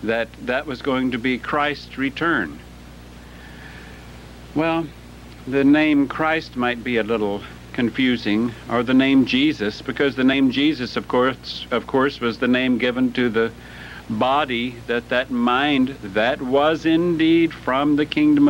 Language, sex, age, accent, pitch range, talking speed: English, male, 60-79, American, 95-145 Hz, 145 wpm